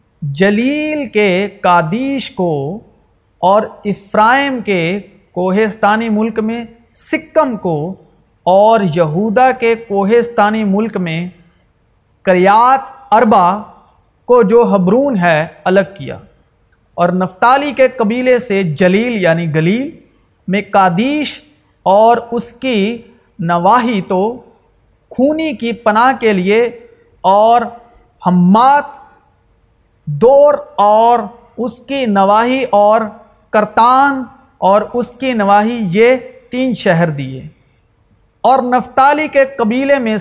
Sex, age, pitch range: male, 40-59, 185-250 Hz